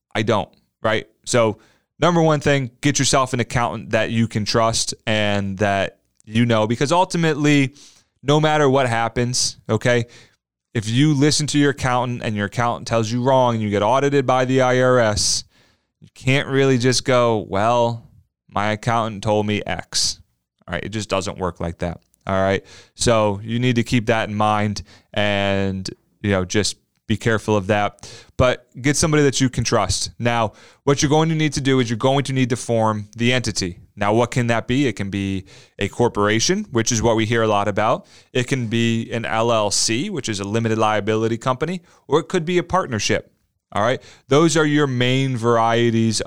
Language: English